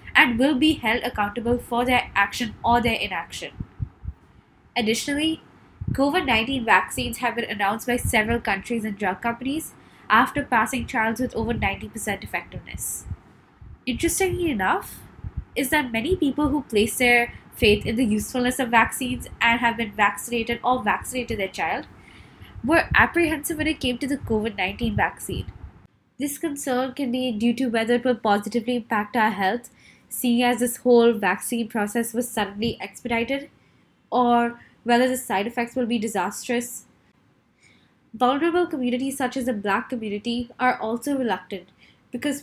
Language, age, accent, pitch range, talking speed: English, 20-39, Indian, 225-260 Hz, 145 wpm